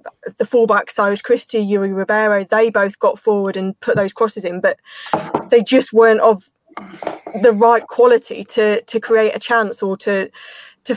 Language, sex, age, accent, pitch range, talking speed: English, female, 20-39, British, 200-230 Hz, 170 wpm